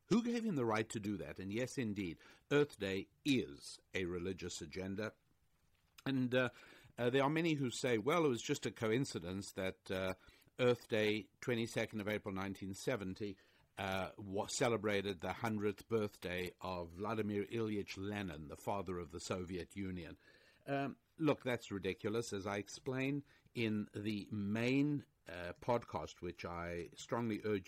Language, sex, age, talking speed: English, male, 60-79, 150 wpm